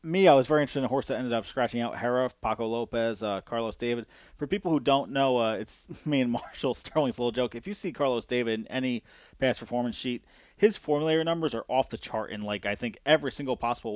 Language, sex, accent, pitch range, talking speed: English, male, American, 115-140 Hz, 240 wpm